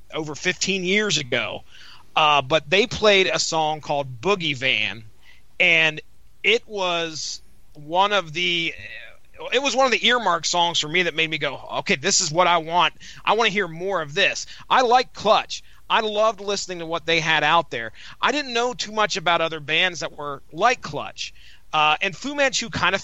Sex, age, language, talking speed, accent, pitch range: male, 30-49, English, 195 wpm, American, 145-195 Hz